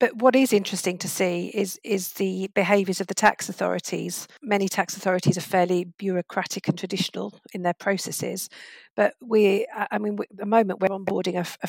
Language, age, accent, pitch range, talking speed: English, 50-69, British, 180-210 Hz, 190 wpm